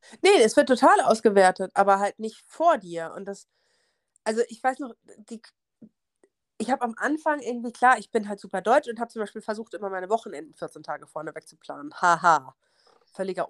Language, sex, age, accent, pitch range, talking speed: German, female, 30-49, German, 175-230 Hz, 195 wpm